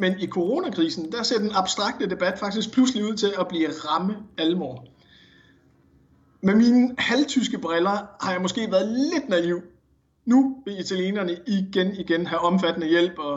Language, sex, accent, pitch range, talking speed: Danish, male, native, 165-215 Hz, 160 wpm